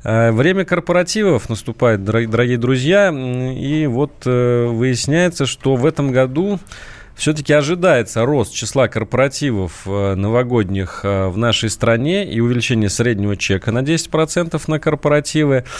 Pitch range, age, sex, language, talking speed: 110-145 Hz, 30-49, male, Russian, 110 wpm